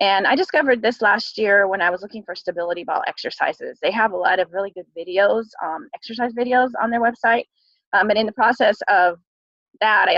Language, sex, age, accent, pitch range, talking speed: English, female, 20-39, American, 185-225 Hz, 210 wpm